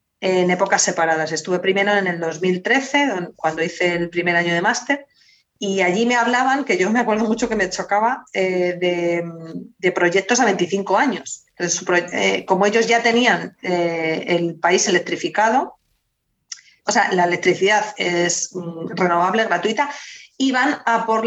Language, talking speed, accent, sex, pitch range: Spanish, 145 wpm, Spanish, female, 175-205 Hz